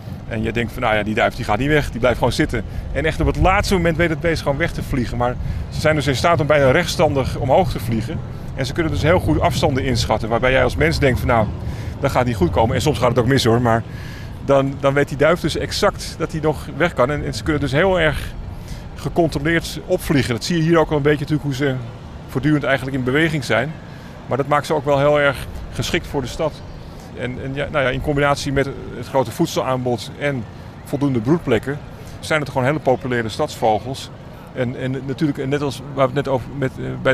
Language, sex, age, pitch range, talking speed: Dutch, male, 40-59, 120-145 Hz, 245 wpm